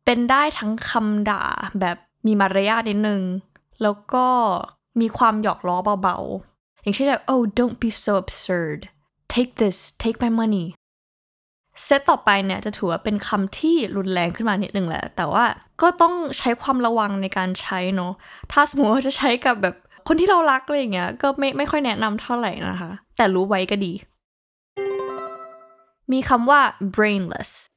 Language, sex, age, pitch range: Thai, female, 10-29, 195-270 Hz